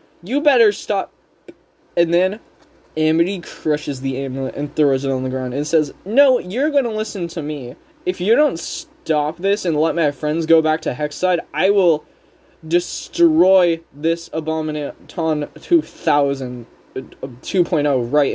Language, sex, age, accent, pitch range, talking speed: English, male, 20-39, American, 155-220 Hz, 145 wpm